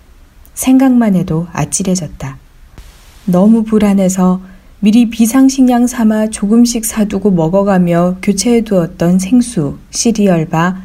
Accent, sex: native, female